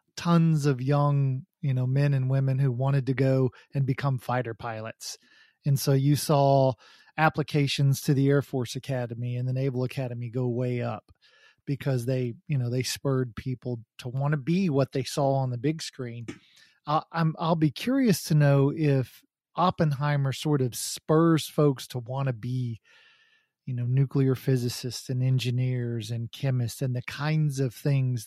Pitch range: 125-150 Hz